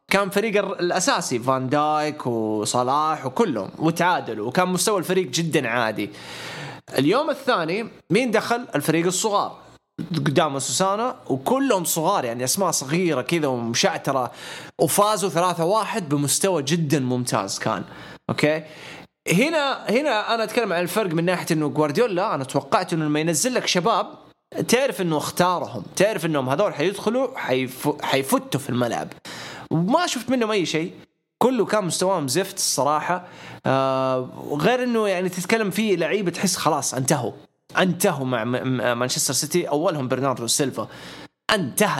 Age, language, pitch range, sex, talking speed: 20-39, English, 140-195 Hz, male, 135 wpm